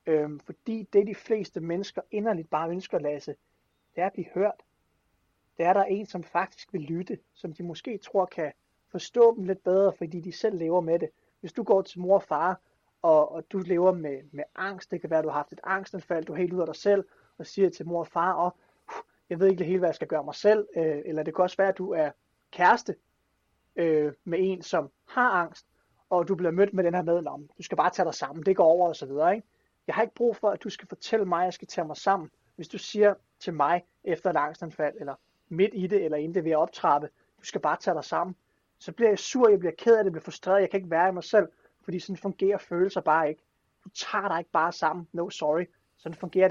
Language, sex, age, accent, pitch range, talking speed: Danish, male, 30-49, native, 165-195 Hz, 255 wpm